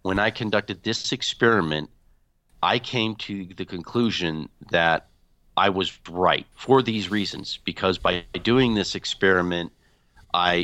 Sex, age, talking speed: male, 40-59, 130 wpm